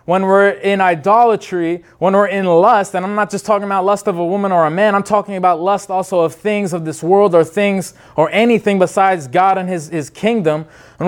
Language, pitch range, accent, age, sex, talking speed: English, 160-200 Hz, American, 20-39, male, 225 wpm